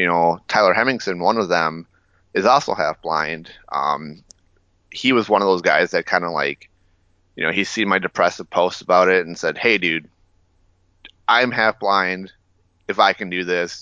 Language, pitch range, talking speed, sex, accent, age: English, 85-95 Hz, 175 wpm, male, American, 30-49